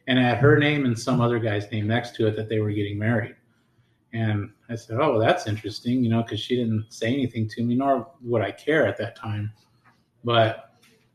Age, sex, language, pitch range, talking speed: 30-49, male, English, 110-125 Hz, 215 wpm